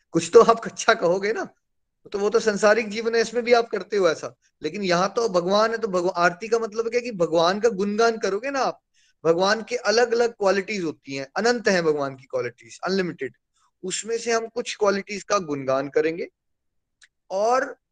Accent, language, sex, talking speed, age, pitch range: native, Hindi, male, 190 wpm, 20-39, 180-230 Hz